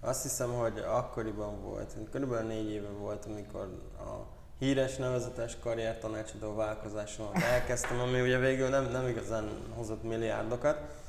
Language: Hungarian